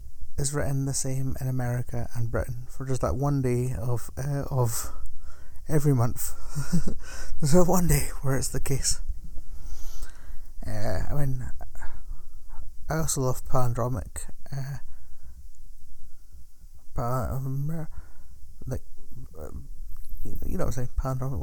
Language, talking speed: English, 125 wpm